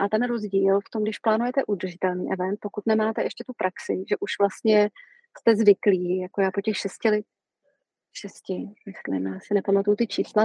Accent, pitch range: native, 195-215 Hz